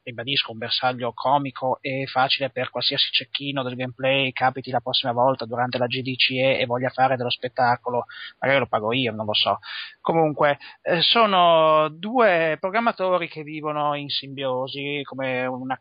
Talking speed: 150 wpm